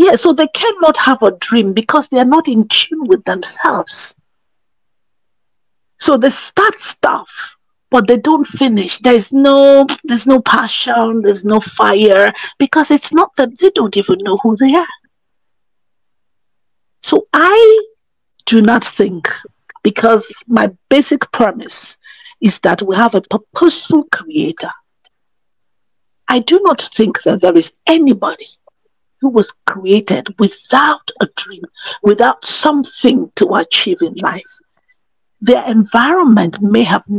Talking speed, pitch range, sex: 130 wpm, 215-320 Hz, female